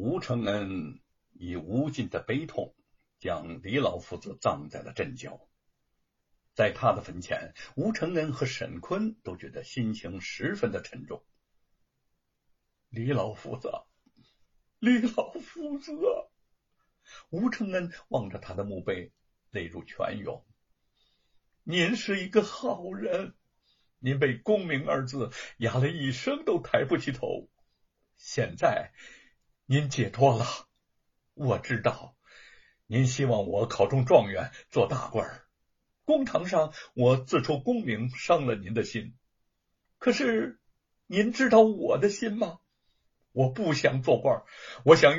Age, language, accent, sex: 60-79, Chinese, native, male